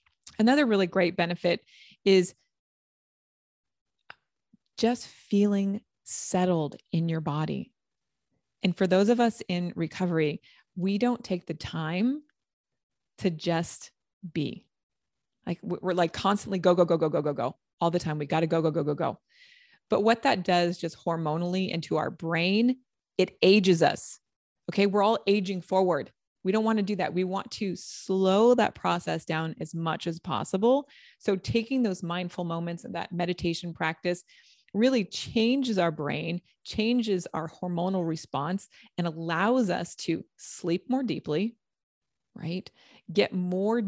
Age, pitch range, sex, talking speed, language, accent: 20-39, 170-210 Hz, female, 150 wpm, English, American